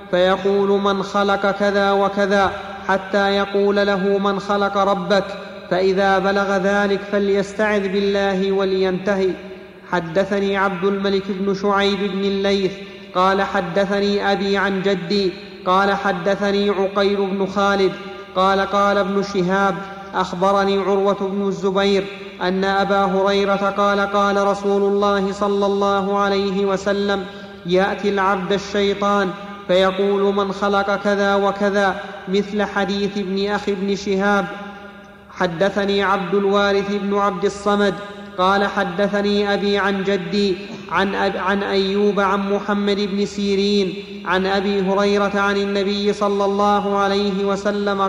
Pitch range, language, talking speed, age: 195-200 Hz, Arabic, 115 wpm, 30-49